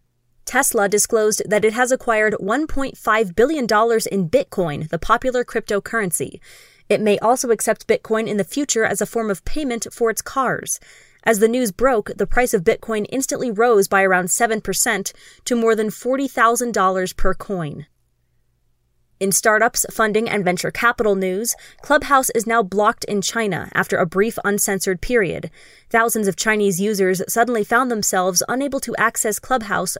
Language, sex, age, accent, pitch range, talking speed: English, female, 20-39, American, 195-235 Hz, 155 wpm